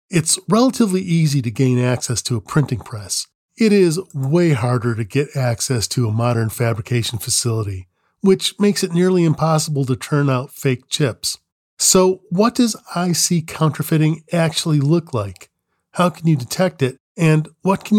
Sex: male